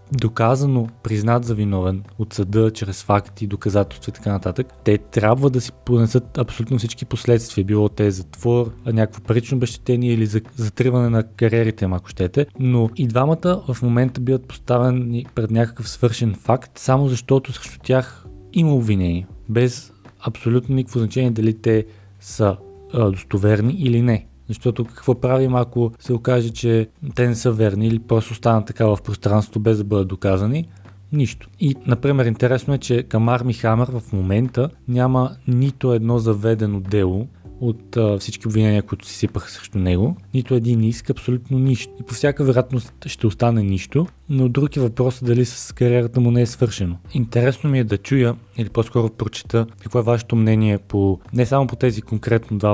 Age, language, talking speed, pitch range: 20-39, Bulgarian, 170 wpm, 105-125 Hz